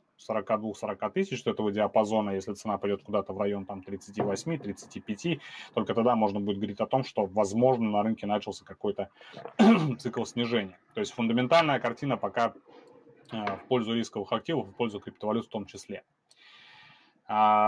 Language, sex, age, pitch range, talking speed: Russian, male, 30-49, 105-135 Hz, 150 wpm